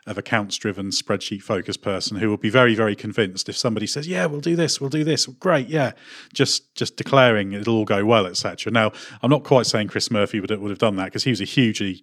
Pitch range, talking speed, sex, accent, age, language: 100-120 Hz, 240 wpm, male, British, 30-49, English